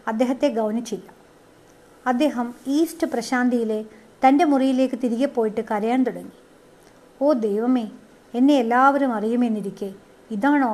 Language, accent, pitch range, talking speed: Malayalam, native, 225-265 Hz, 95 wpm